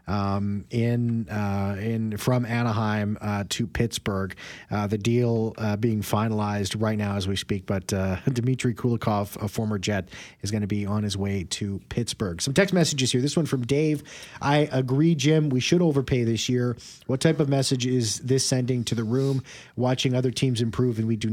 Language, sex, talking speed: English, male, 195 wpm